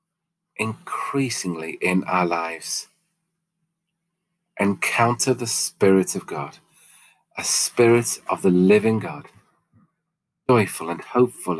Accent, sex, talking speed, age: British, male, 95 wpm, 40-59